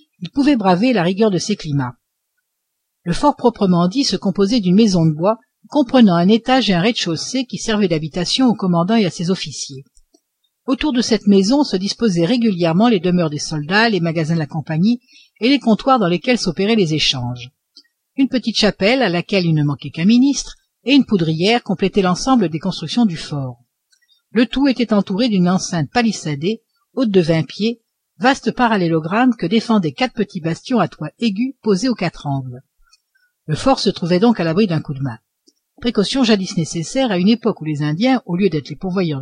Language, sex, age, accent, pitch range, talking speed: French, female, 60-79, French, 165-240 Hz, 195 wpm